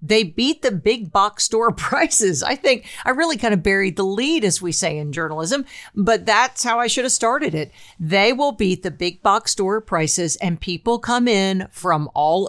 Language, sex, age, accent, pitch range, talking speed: English, female, 50-69, American, 170-210 Hz, 205 wpm